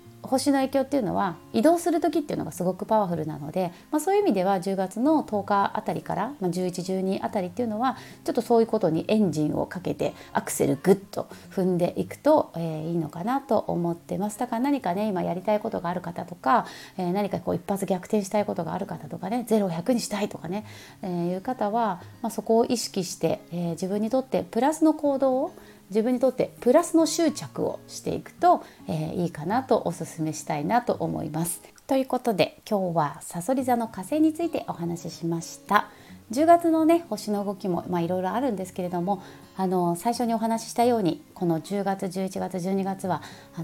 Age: 30-49